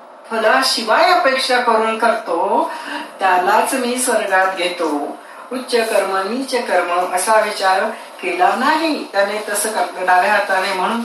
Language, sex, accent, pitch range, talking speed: Marathi, female, native, 195-265 Hz, 115 wpm